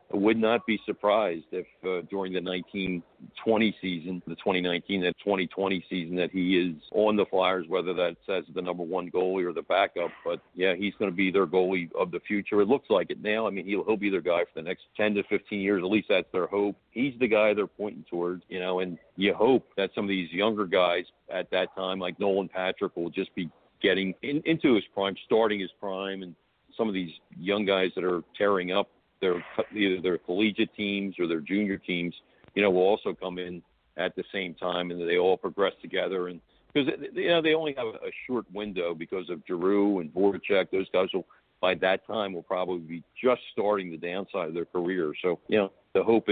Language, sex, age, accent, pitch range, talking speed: English, male, 50-69, American, 90-100 Hz, 225 wpm